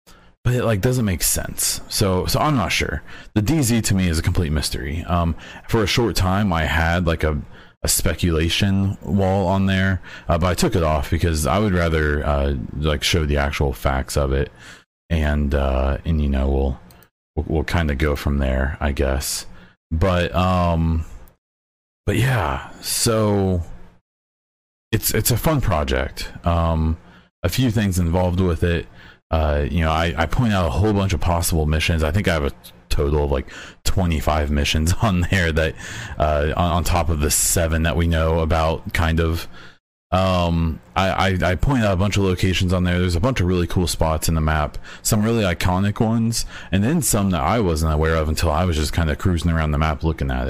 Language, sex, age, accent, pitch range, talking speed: English, male, 30-49, American, 75-95 Hz, 200 wpm